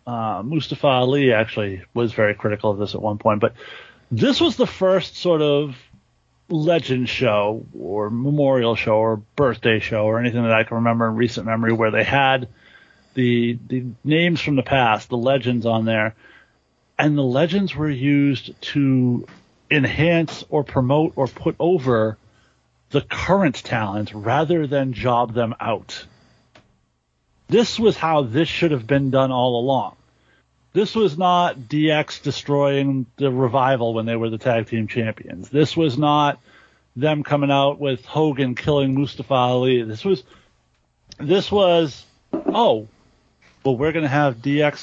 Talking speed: 155 wpm